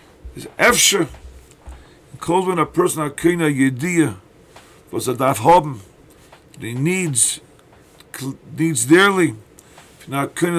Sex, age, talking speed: male, 50-69, 100 wpm